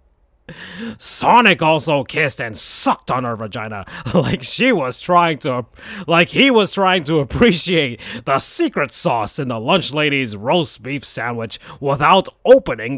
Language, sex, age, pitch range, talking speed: English, male, 30-49, 120-175 Hz, 145 wpm